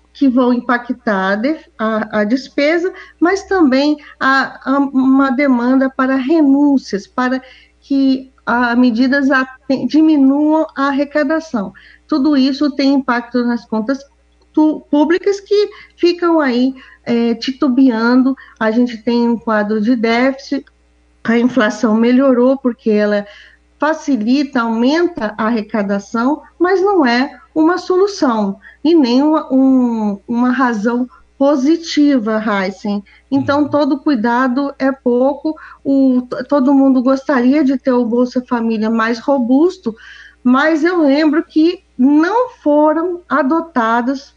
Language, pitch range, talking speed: Portuguese, 245-300 Hz, 120 wpm